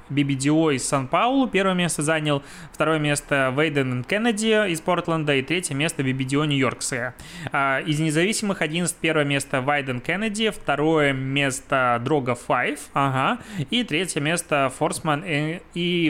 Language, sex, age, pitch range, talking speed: Russian, male, 20-39, 140-175 Hz, 135 wpm